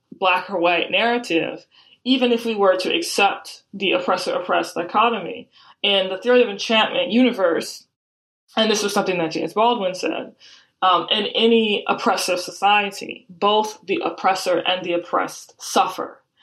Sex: female